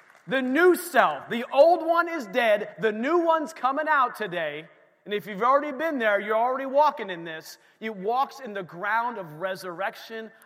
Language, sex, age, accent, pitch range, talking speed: English, male, 30-49, American, 155-225 Hz, 185 wpm